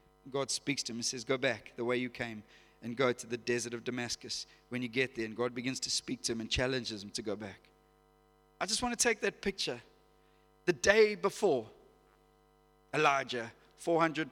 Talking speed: 200 wpm